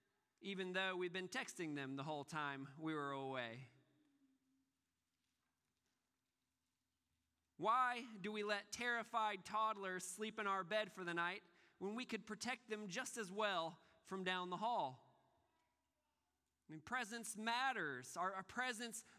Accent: American